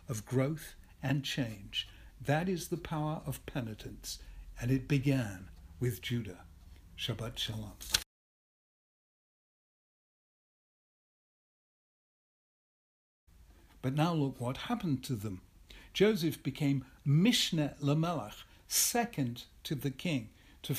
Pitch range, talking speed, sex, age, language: 105-150 Hz, 95 wpm, male, 60-79, English